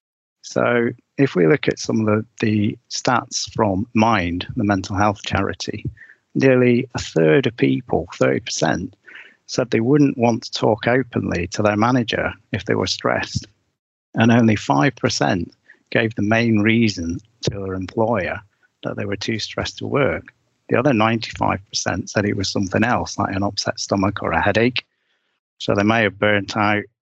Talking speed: 165 wpm